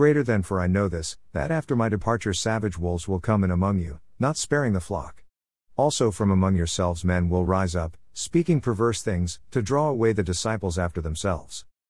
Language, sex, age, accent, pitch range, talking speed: English, male, 50-69, American, 85-115 Hz, 195 wpm